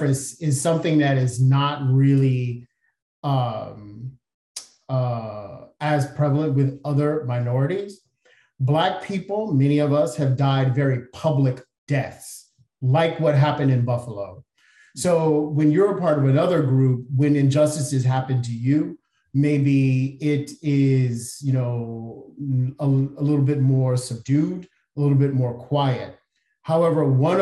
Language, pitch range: English, 130-150 Hz